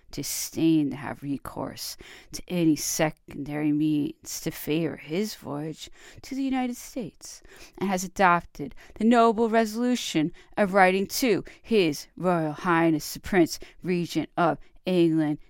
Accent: American